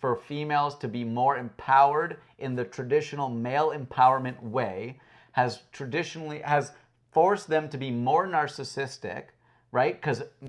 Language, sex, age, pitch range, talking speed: English, male, 30-49, 120-150 Hz, 130 wpm